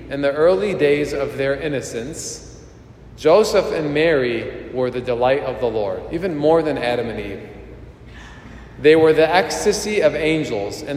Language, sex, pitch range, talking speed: English, male, 125-155 Hz, 160 wpm